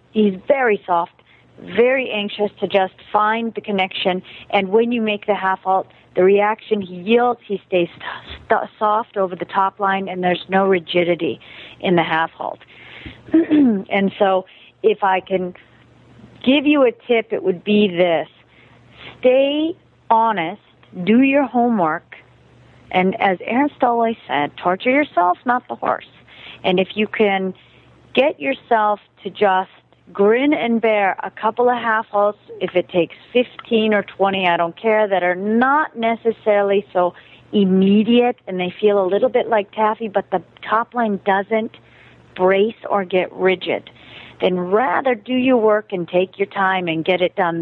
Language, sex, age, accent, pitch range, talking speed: English, female, 40-59, American, 185-225 Hz, 160 wpm